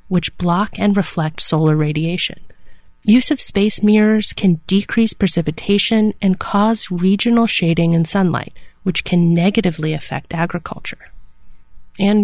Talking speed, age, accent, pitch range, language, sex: 125 wpm, 30-49, American, 165-215 Hz, English, female